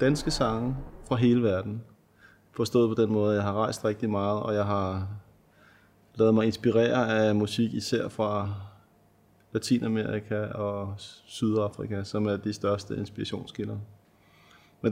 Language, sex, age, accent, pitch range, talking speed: Danish, male, 30-49, native, 100-115 Hz, 135 wpm